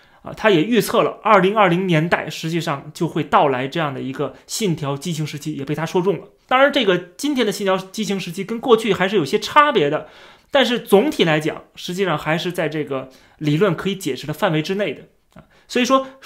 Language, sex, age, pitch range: Chinese, male, 20-39, 150-225 Hz